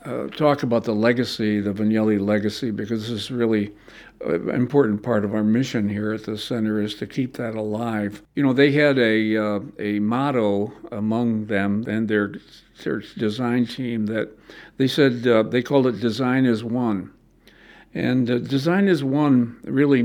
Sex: male